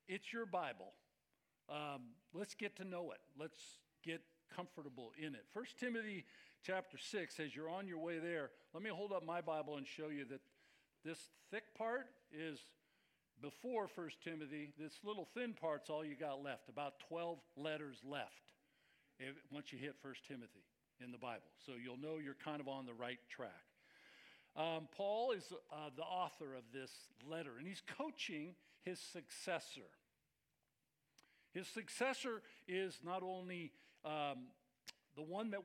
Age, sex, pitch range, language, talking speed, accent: 50-69, male, 145-195 Hz, English, 160 wpm, American